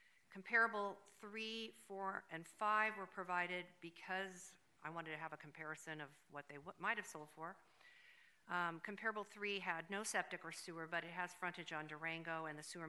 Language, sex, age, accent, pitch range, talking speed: English, female, 50-69, American, 155-190 Hz, 175 wpm